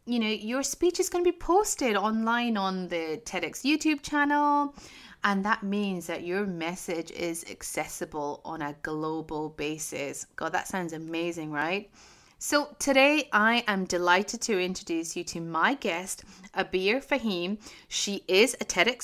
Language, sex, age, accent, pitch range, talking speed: English, female, 30-49, British, 170-225 Hz, 155 wpm